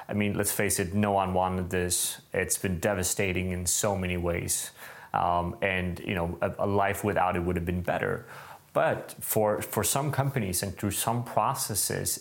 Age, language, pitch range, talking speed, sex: 20-39, English, 90-105 Hz, 185 wpm, male